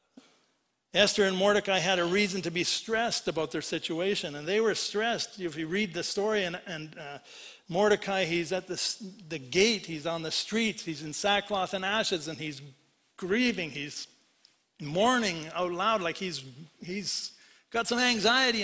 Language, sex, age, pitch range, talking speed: English, male, 60-79, 180-220 Hz, 165 wpm